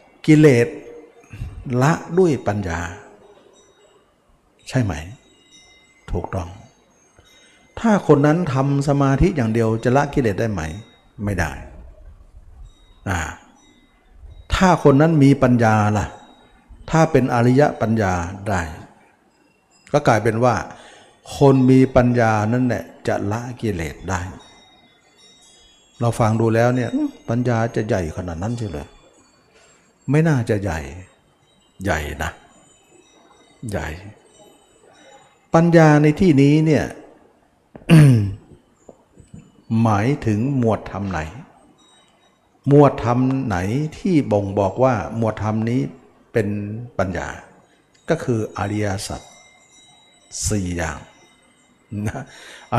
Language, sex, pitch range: Thai, male, 95-135 Hz